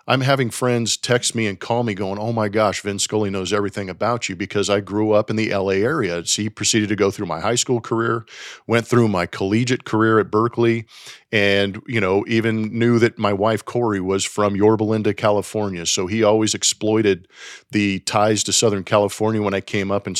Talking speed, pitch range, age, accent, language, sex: 210 wpm, 100-115 Hz, 40-59, American, English, male